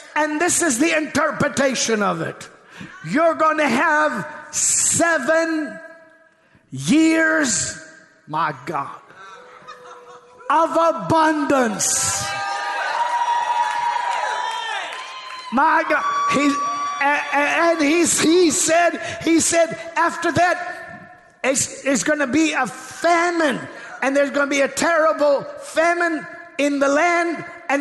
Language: English